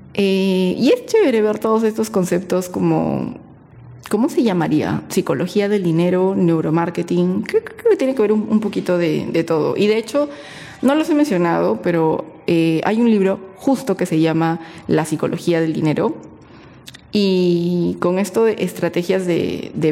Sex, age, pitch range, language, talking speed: female, 20-39, 170-205 Hz, Spanish, 165 wpm